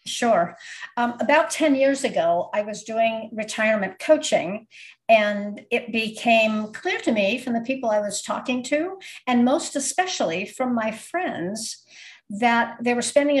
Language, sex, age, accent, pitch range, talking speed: English, female, 50-69, American, 200-275 Hz, 150 wpm